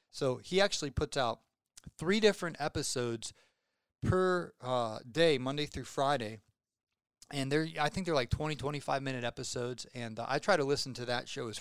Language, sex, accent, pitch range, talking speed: English, male, American, 125-155 Hz, 170 wpm